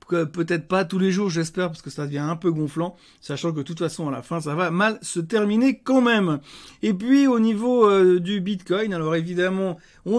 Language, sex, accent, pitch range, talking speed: French, male, French, 160-205 Hz, 225 wpm